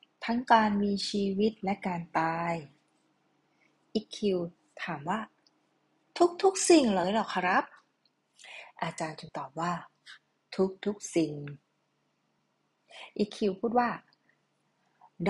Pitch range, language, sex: 185-265 Hz, Thai, female